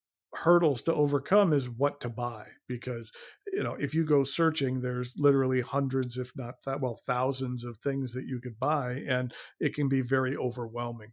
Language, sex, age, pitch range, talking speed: Filipino, male, 50-69, 120-140 Hz, 185 wpm